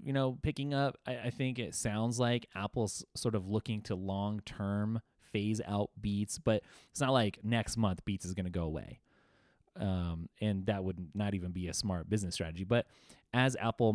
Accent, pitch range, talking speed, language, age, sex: American, 95-120 Hz, 190 wpm, English, 20-39, male